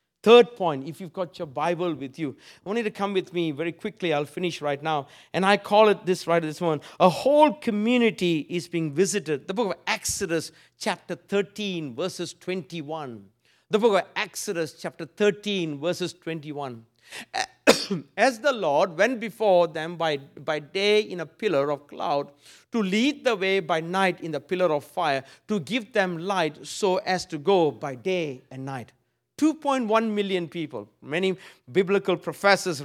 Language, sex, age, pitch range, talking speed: English, male, 50-69, 160-200 Hz, 175 wpm